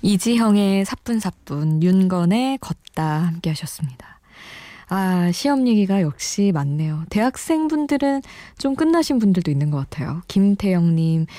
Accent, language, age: native, Korean, 20-39